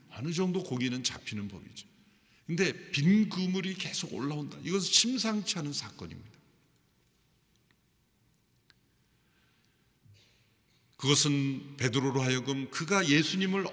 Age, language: 50-69, Korean